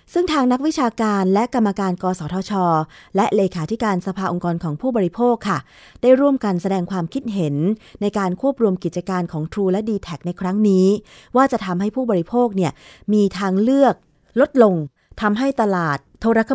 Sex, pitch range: female, 180-220 Hz